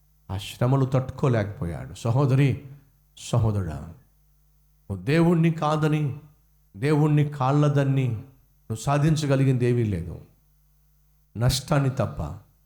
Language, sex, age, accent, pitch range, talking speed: Telugu, male, 50-69, native, 135-165 Hz, 65 wpm